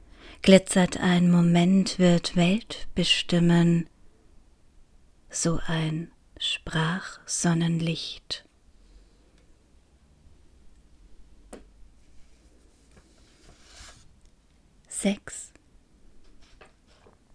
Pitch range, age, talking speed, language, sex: 160-195 Hz, 30-49, 35 wpm, German, female